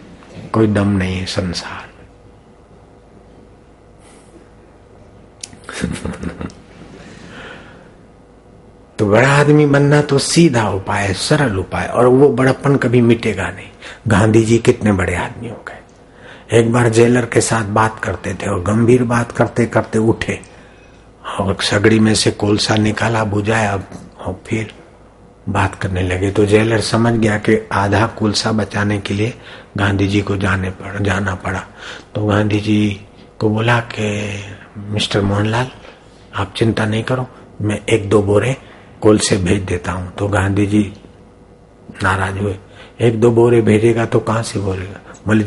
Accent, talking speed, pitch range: native, 140 wpm, 100-115 Hz